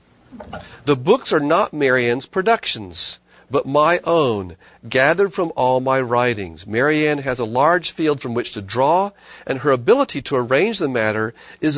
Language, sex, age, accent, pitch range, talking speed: English, male, 40-59, American, 120-170 Hz, 160 wpm